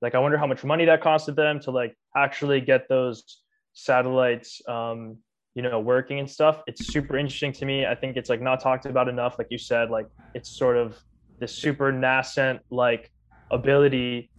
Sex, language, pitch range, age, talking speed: male, English, 120-140 Hz, 20-39, 190 wpm